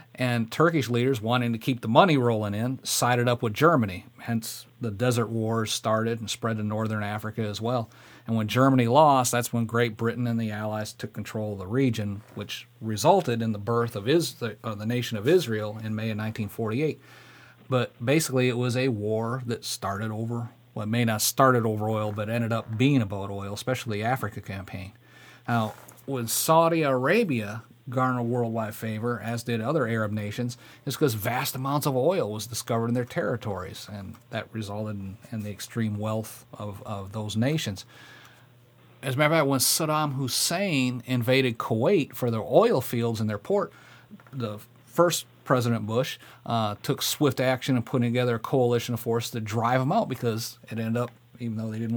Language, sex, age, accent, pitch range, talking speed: English, male, 40-59, American, 110-130 Hz, 190 wpm